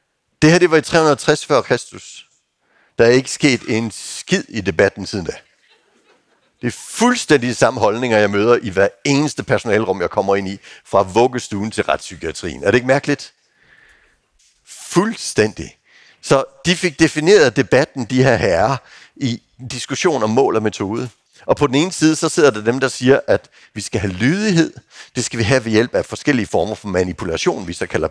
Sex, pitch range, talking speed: male, 105-150 Hz, 180 wpm